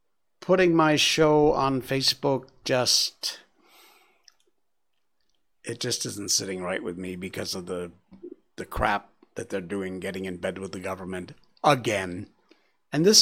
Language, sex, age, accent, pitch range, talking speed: English, male, 60-79, American, 110-145 Hz, 135 wpm